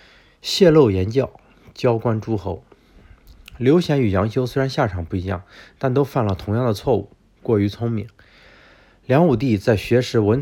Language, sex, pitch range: Chinese, male, 100-120 Hz